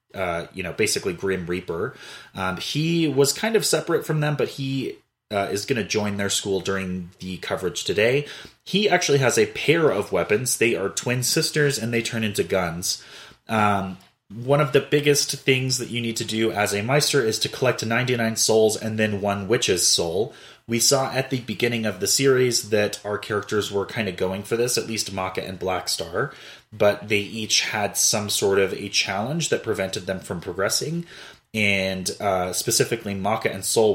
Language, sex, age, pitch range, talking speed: English, male, 30-49, 100-135 Hz, 195 wpm